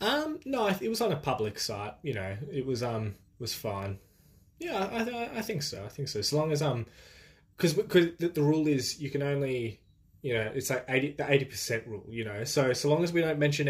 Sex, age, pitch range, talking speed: male, 20-39, 110-150 Hz, 230 wpm